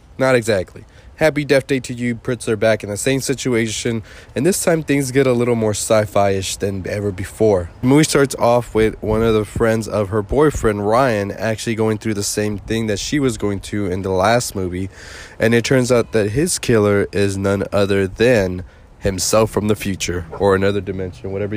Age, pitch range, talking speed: 20-39, 100-120 Hz, 200 wpm